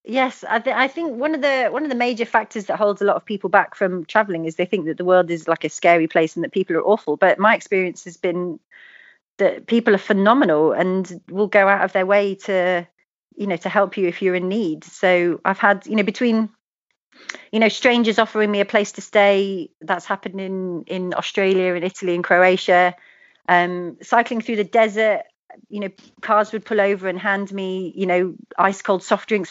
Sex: female